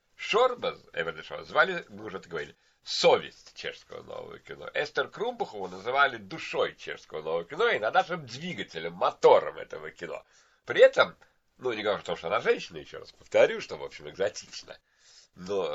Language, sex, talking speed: Russian, male, 160 wpm